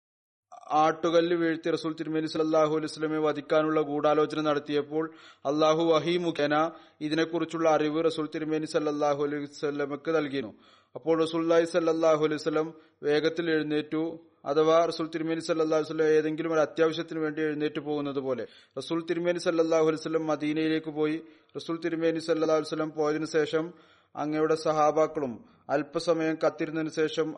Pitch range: 150-165 Hz